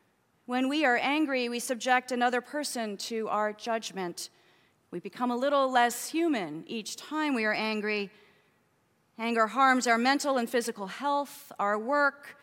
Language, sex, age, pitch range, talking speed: English, female, 30-49, 225-295 Hz, 150 wpm